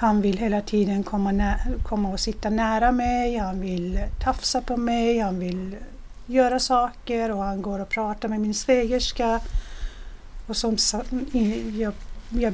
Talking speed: 150 wpm